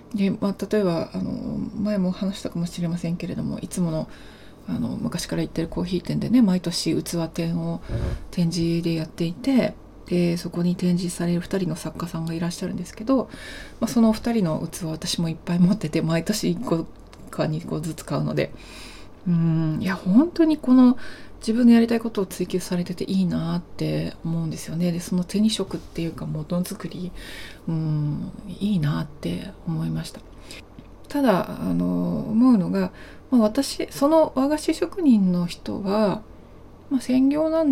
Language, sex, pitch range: Japanese, female, 170-240 Hz